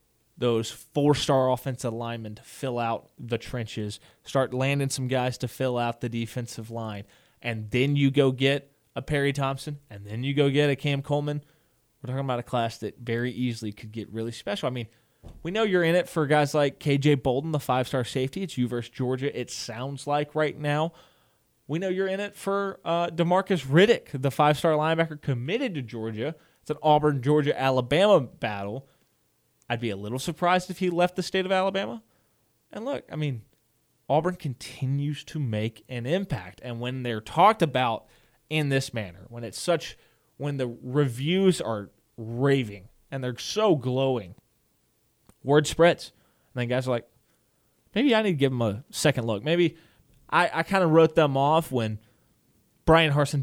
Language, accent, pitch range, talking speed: English, American, 120-150 Hz, 180 wpm